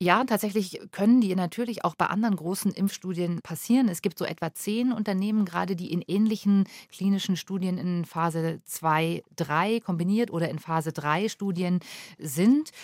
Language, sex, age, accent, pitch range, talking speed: German, female, 40-59, German, 170-210 Hz, 160 wpm